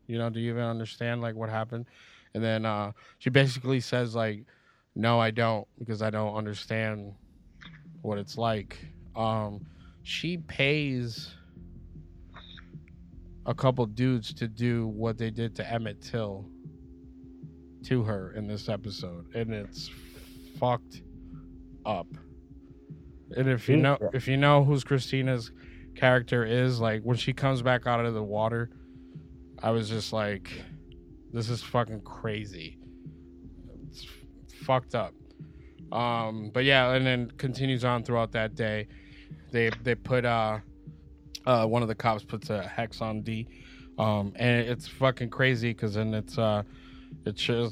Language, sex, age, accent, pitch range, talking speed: English, male, 20-39, American, 100-125 Hz, 145 wpm